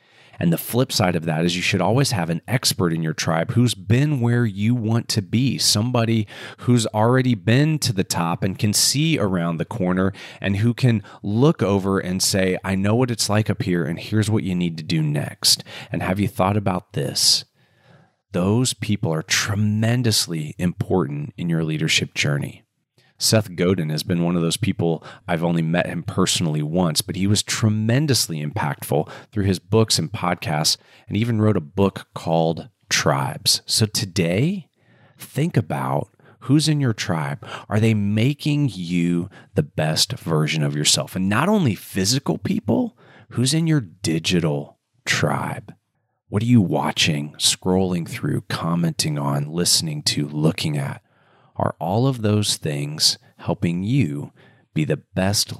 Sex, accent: male, American